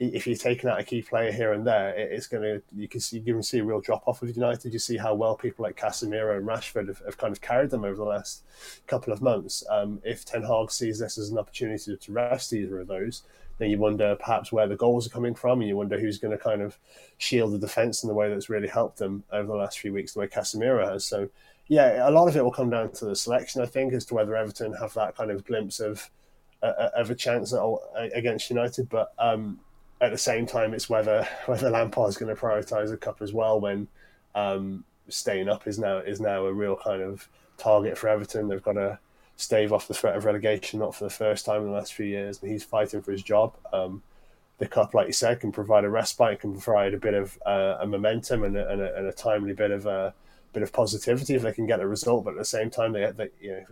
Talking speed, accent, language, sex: 260 wpm, British, English, male